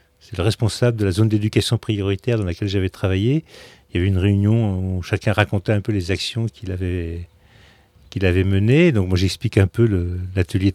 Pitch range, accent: 90-110 Hz, French